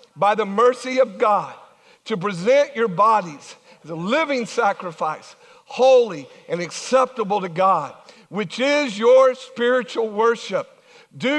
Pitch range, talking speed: 210-260 Hz, 125 wpm